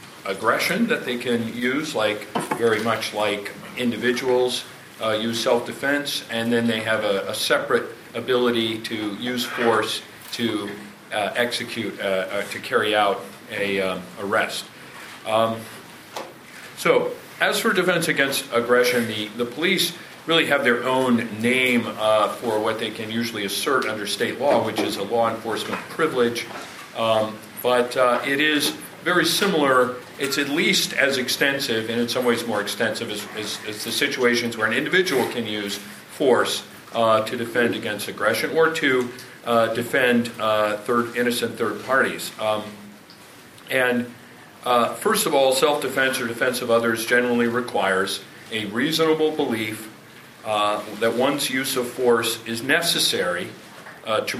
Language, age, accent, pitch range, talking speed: English, 40-59, American, 110-130 Hz, 150 wpm